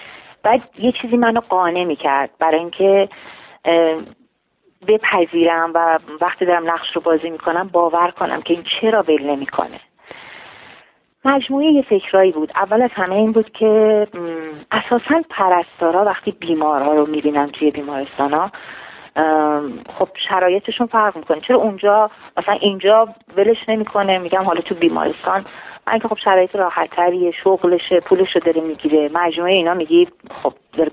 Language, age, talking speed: Persian, 30-49, 135 wpm